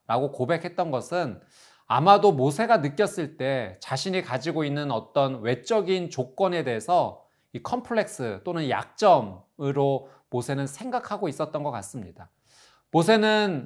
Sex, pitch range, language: male, 125-185 Hz, Korean